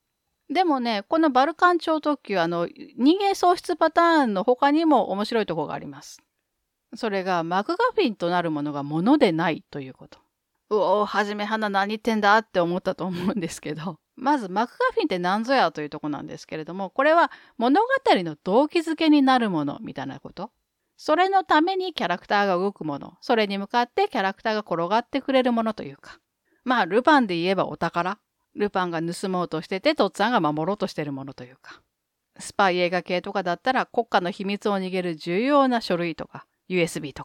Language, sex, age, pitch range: Japanese, female, 40-59, 180-280 Hz